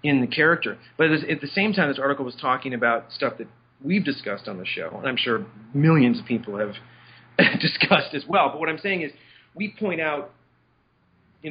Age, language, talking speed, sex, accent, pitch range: 40-59, English, 205 wpm, male, American, 120-150 Hz